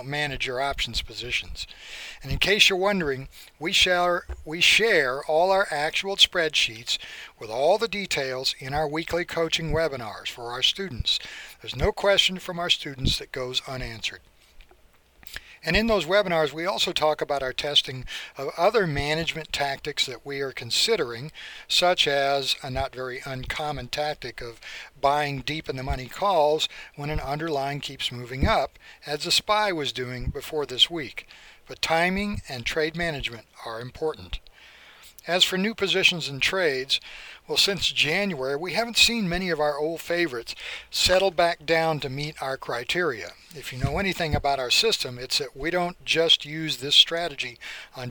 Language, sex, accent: English, male, American